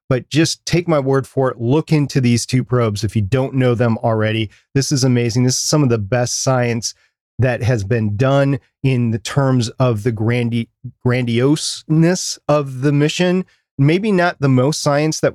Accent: American